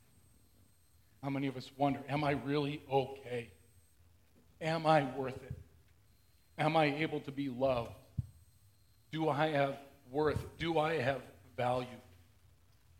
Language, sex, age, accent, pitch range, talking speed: English, male, 40-59, American, 100-135 Hz, 125 wpm